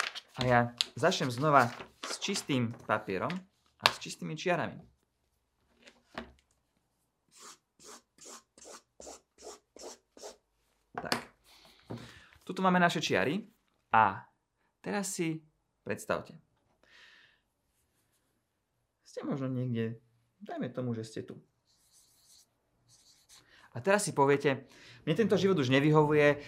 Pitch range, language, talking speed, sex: 125-160 Hz, English, 80 wpm, male